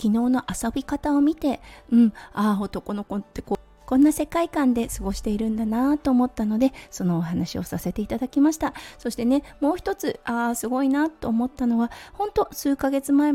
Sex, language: female, Japanese